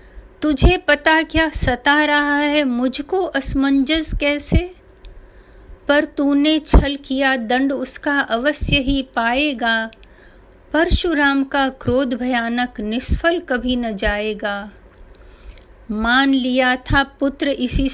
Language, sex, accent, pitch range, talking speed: Hindi, female, native, 250-310 Hz, 105 wpm